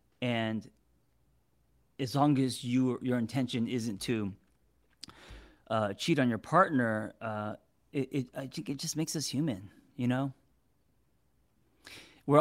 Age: 30-49